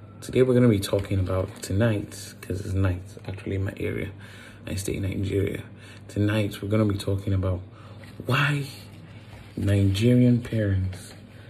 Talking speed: 150 wpm